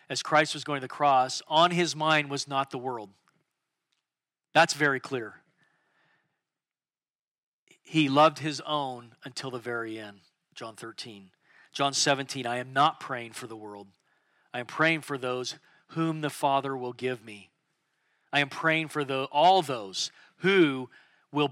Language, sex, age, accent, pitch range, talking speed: English, male, 40-59, American, 135-175 Hz, 155 wpm